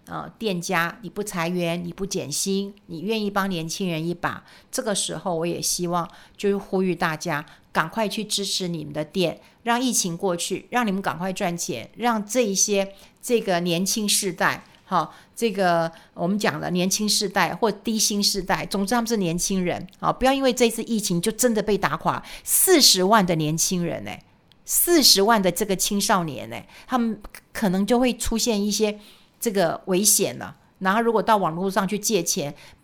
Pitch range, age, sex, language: 180-225 Hz, 50-69, female, Chinese